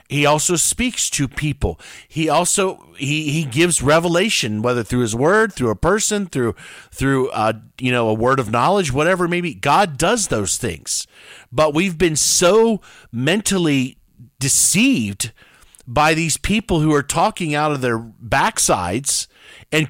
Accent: American